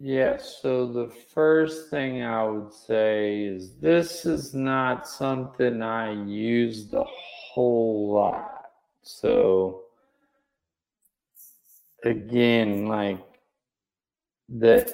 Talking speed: 90 wpm